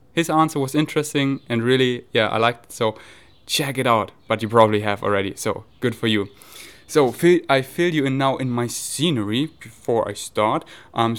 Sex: male